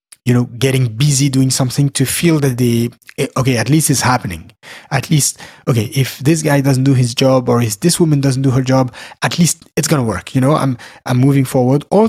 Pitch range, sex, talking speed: 125-155 Hz, male, 225 wpm